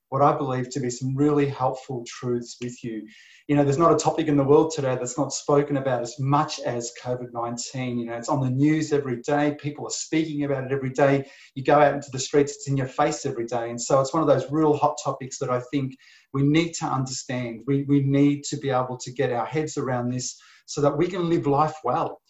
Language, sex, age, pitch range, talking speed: English, male, 30-49, 125-150 Hz, 245 wpm